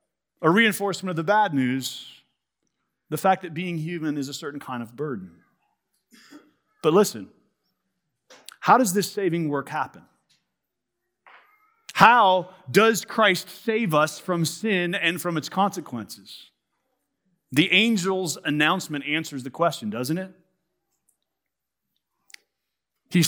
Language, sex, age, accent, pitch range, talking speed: English, male, 40-59, American, 175-245 Hz, 115 wpm